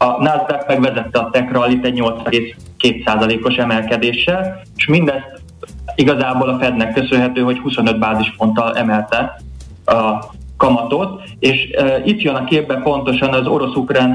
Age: 20-39